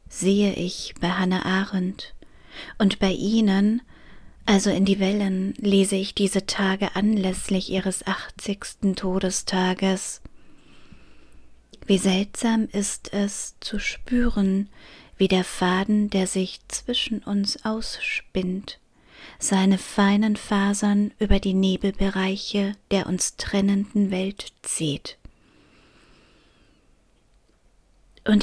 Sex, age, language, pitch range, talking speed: female, 30-49, German, 185-205 Hz, 95 wpm